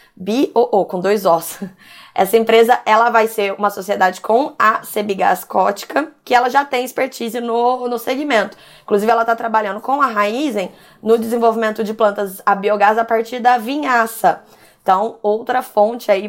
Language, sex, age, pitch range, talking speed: Portuguese, female, 20-39, 185-230 Hz, 160 wpm